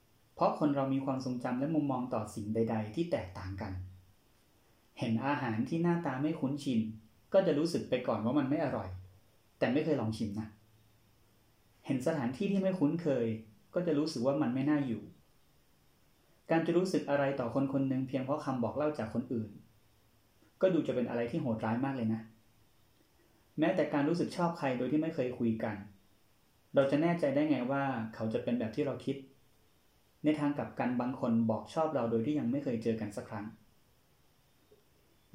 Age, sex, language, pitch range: 30-49, male, Thai, 110-145 Hz